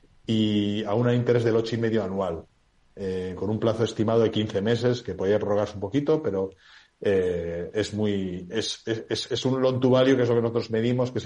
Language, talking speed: Spanish, 220 wpm